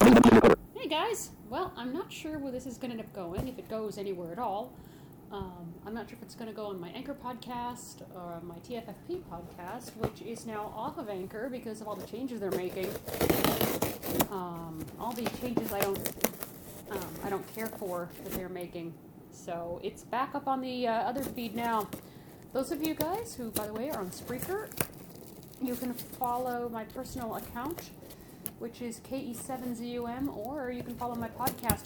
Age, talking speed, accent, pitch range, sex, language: 40-59, 185 wpm, American, 190-260 Hz, female, English